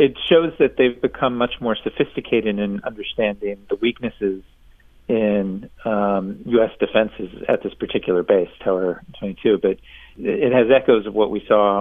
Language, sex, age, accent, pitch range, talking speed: English, male, 40-59, American, 100-120 Hz, 150 wpm